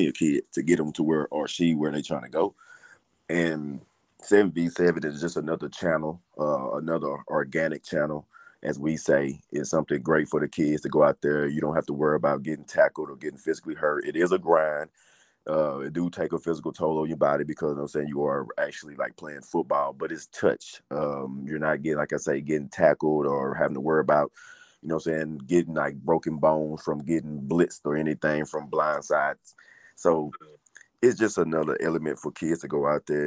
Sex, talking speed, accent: male, 215 wpm, American